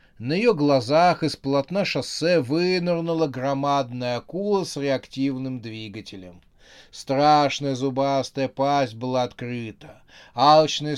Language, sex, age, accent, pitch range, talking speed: Russian, male, 30-49, native, 125-155 Hz, 100 wpm